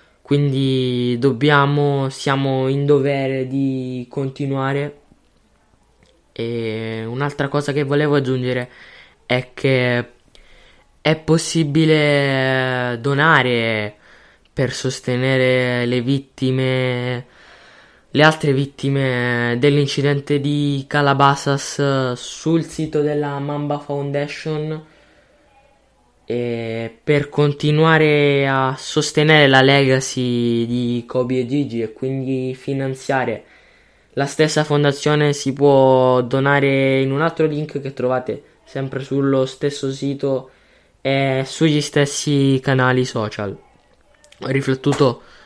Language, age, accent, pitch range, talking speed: Italian, 20-39, native, 130-145 Hz, 90 wpm